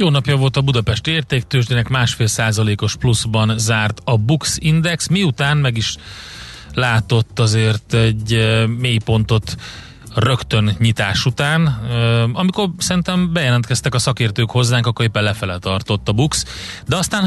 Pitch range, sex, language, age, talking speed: 105-135 Hz, male, Hungarian, 30-49, 130 wpm